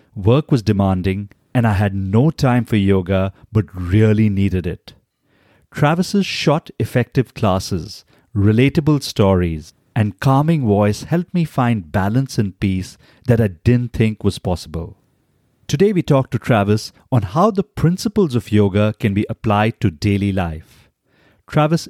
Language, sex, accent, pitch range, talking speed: English, male, Indian, 100-130 Hz, 145 wpm